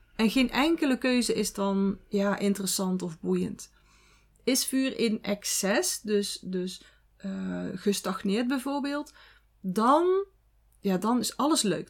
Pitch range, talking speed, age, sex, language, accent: 195-270 Hz, 115 wpm, 30-49, female, Dutch, Dutch